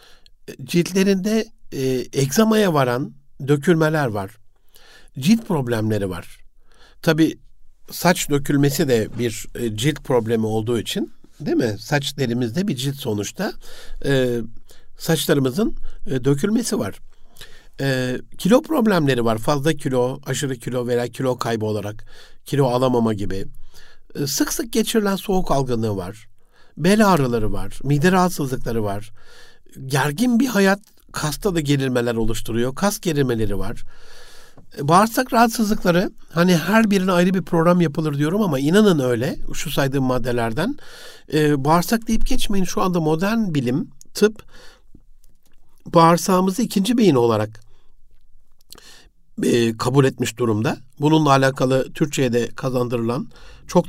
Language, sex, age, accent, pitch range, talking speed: Turkish, male, 60-79, native, 120-180 Hz, 115 wpm